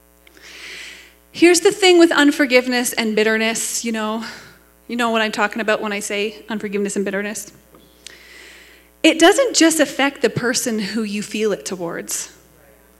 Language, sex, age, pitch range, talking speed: English, female, 30-49, 220-295 Hz, 150 wpm